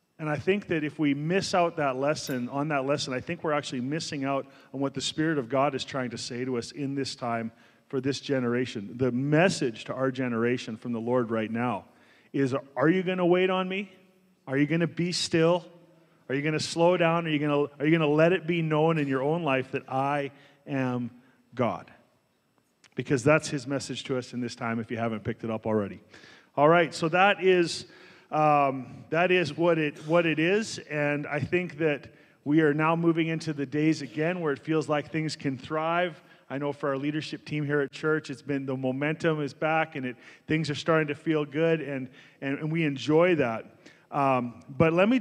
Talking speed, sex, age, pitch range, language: 220 wpm, male, 40-59, 130-160 Hz, English